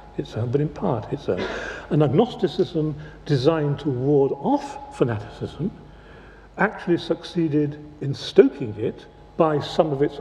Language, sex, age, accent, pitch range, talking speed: English, male, 60-79, British, 125-160 Hz, 125 wpm